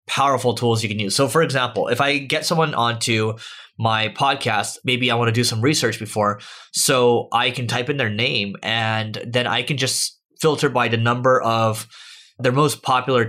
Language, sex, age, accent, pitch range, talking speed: English, male, 20-39, American, 110-130 Hz, 195 wpm